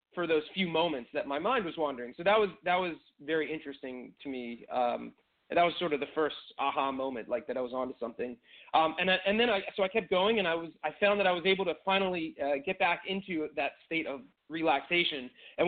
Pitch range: 150-195 Hz